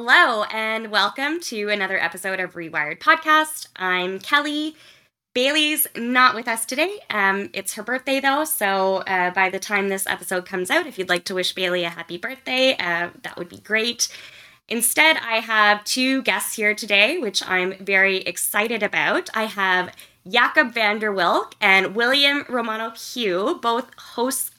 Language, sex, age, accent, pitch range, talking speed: English, female, 20-39, American, 185-245 Hz, 165 wpm